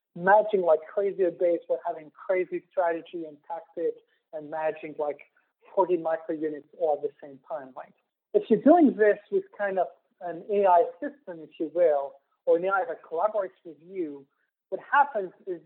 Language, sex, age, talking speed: English, male, 40-59, 175 wpm